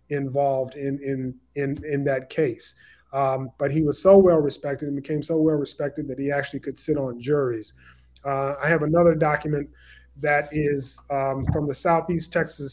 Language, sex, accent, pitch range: English, male, American, 135-160 Hz